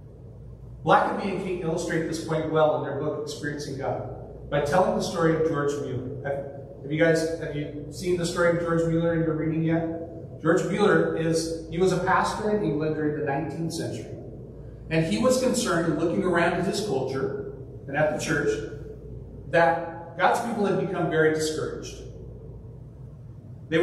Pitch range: 135-175 Hz